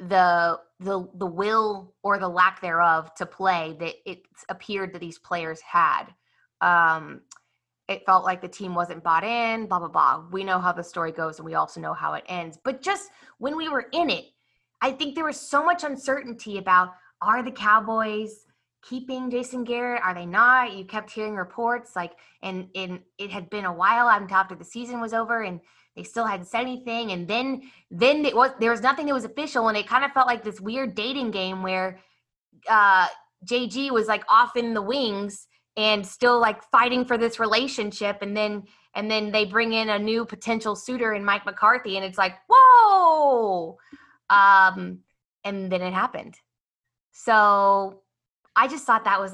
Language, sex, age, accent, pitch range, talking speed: English, female, 20-39, American, 185-240 Hz, 190 wpm